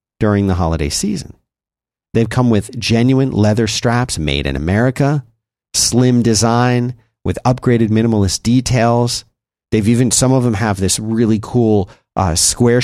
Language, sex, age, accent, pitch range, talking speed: English, male, 40-59, American, 90-115 Hz, 140 wpm